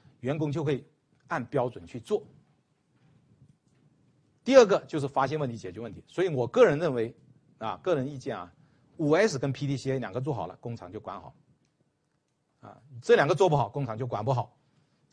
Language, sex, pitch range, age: Chinese, male, 125-155 Hz, 50-69